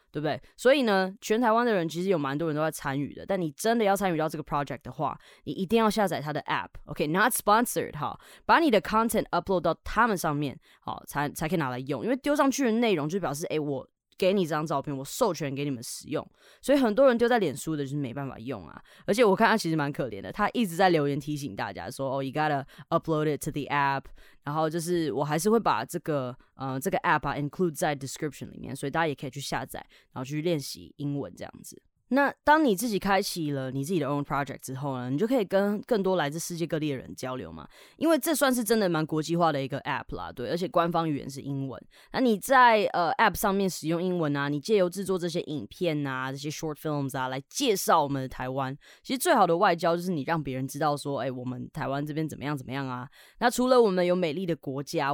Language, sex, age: Chinese, female, 20-39